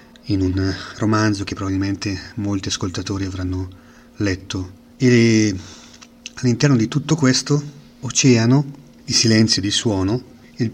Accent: native